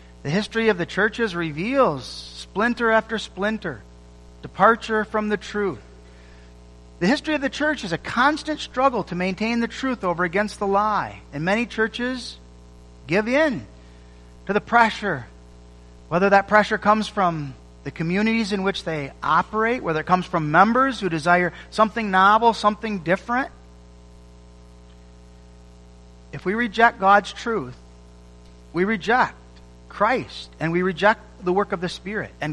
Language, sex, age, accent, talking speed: English, male, 40-59, American, 140 wpm